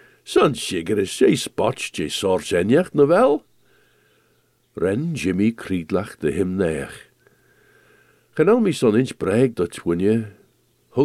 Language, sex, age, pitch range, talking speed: English, male, 60-79, 95-155 Hz, 135 wpm